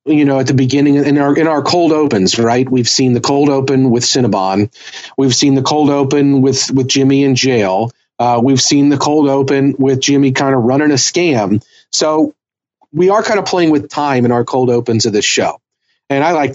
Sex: male